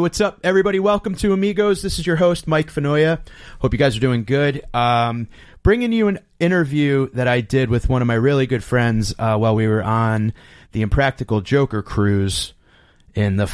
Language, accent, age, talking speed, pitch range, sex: English, American, 30-49, 195 wpm, 110-135 Hz, male